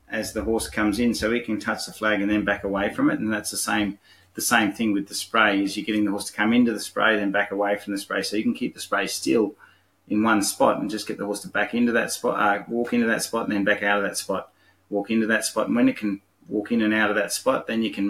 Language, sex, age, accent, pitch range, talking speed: English, male, 30-49, Australian, 100-110 Hz, 310 wpm